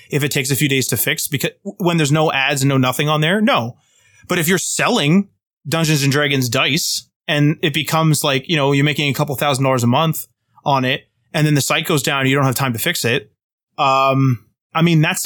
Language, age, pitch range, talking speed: English, 20-39, 135-165 Hz, 235 wpm